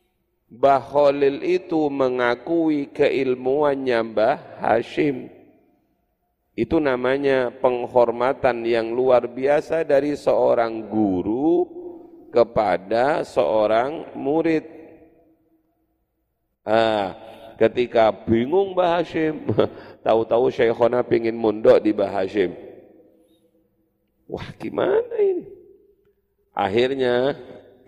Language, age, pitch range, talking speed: Indonesian, 40-59, 120-185 Hz, 75 wpm